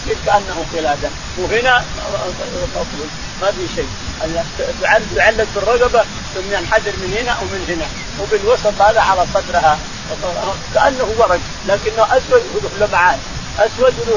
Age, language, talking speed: 40-59, Arabic, 110 wpm